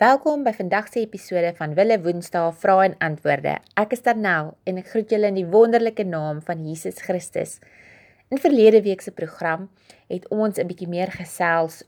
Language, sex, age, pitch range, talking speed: English, female, 30-49, 160-200 Hz, 175 wpm